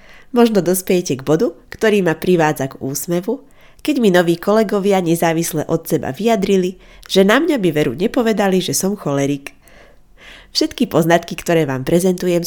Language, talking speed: Slovak, 150 wpm